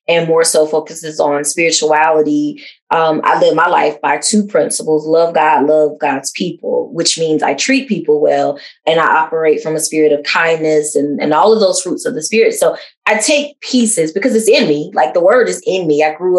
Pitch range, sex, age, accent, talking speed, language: 155-215 Hz, female, 20-39, American, 210 wpm, English